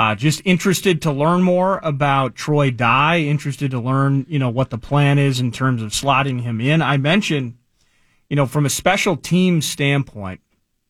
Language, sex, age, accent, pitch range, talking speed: English, male, 30-49, American, 115-145 Hz, 180 wpm